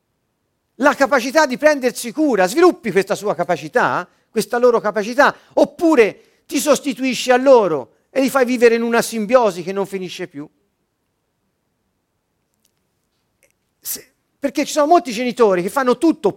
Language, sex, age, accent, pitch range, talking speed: Italian, male, 40-59, native, 195-275 Hz, 130 wpm